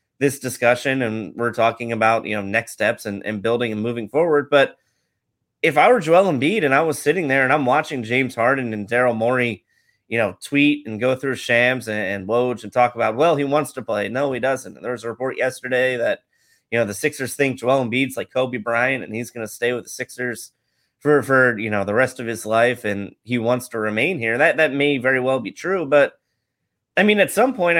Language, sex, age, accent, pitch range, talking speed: English, male, 30-49, American, 115-145 Hz, 230 wpm